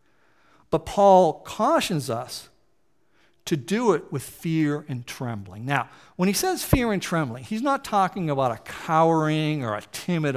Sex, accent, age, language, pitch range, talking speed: male, American, 50-69, English, 140-195 Hz, 155 wpm